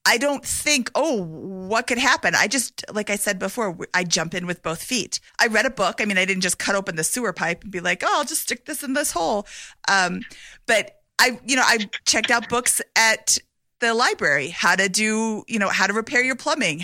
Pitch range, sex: 180-235 Hz, female